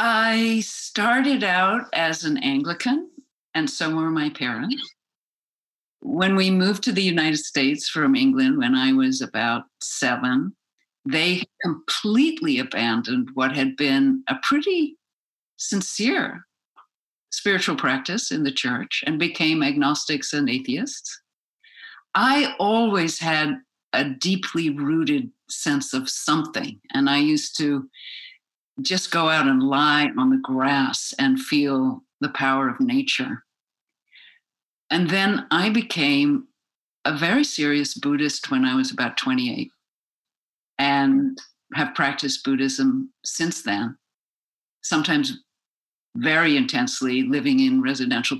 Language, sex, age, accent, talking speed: English, female, 60-79, American, 120 wpm